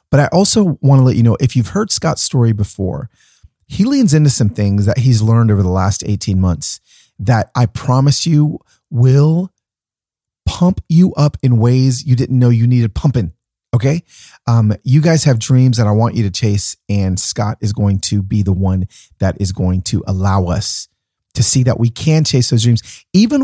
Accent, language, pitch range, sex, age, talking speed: American, English, 105-140 Hz, male, 30-49, 200 wpm